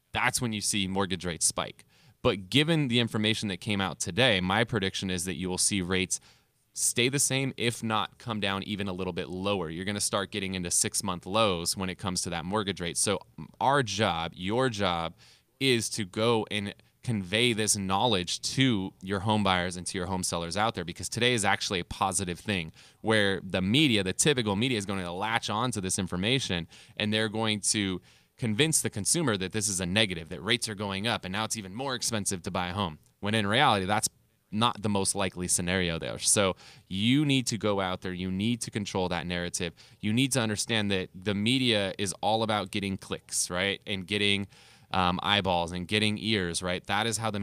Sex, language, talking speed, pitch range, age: male, English, 215 wpm, 95-110 Hz, 20-39